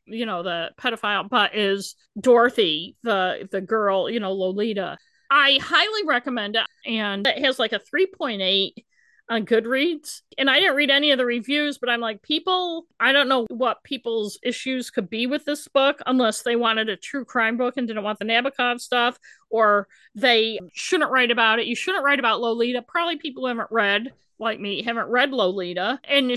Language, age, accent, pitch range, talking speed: English, 50-69, American, 220-265 Hz, 185 wpm